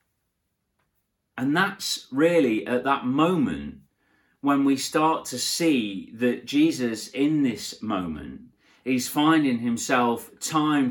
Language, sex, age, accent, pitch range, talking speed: English, male, 40-59, British, 140-205 Hz, 110 wpm